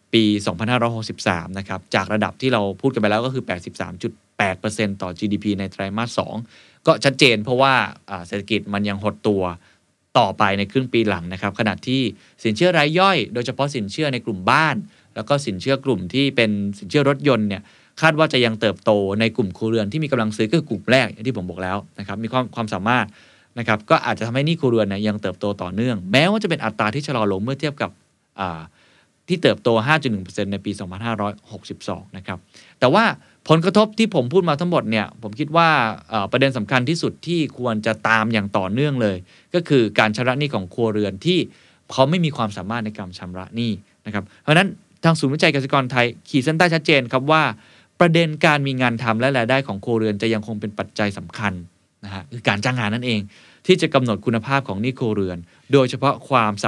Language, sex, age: Thai, male, 20-39